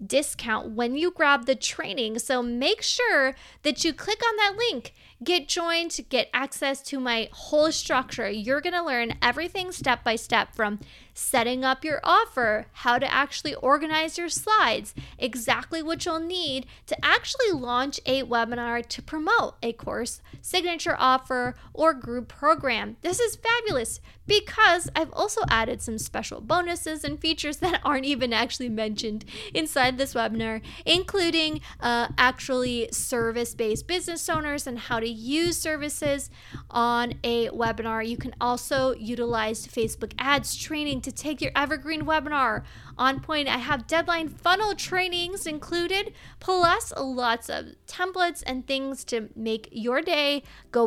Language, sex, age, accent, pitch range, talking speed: English, female, 20-39, American, 240-340 Hz, 145 wpm